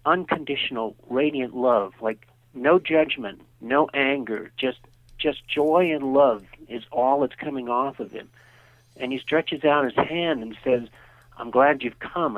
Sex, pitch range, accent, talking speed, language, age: male, 120-140 Hz, American, 155 wpm, English, 50-69